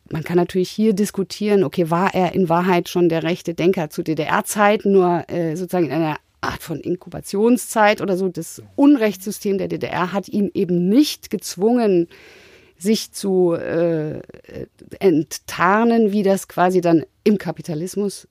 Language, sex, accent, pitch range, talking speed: German, female, German, 165-205 Hz, 150 wpm